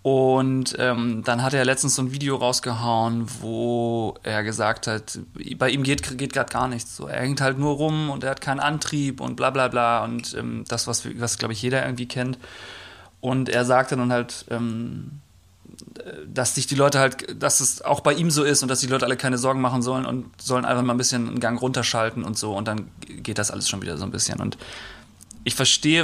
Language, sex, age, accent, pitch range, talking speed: German, male, 30-49, German, 110-130 Hz, 220 wpm